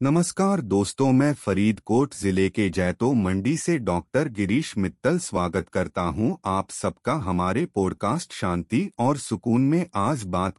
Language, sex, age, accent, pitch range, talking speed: Hindi, male, 30-49, native, 95-145 Hz, 140 wpm